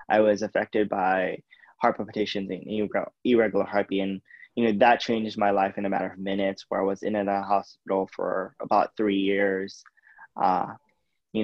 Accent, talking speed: American, 180 wpm